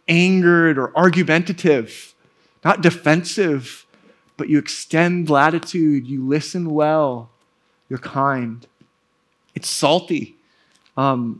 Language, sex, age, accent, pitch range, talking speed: English, male, 20-39, American, 140-195 Hz, 90 wpm